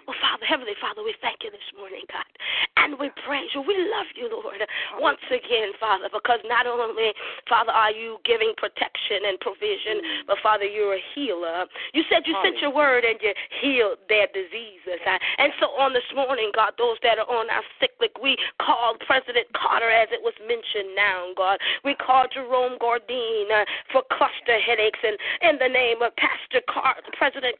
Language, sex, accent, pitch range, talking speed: English, female, American, 230-345 Hz, 185 wpm